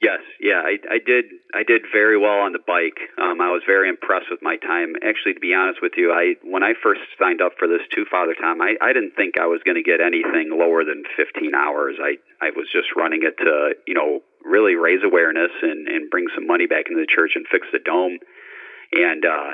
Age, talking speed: 40-59, 240 wpm